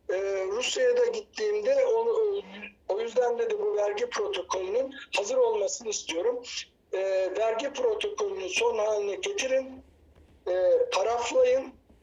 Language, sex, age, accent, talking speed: Turkish, male, 60-79, native, 105 wpm